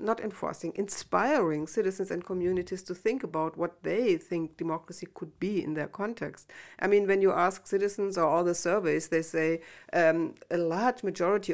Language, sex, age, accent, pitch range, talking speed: German, female, 60-79, German, 170-200 Hz, 175 wpm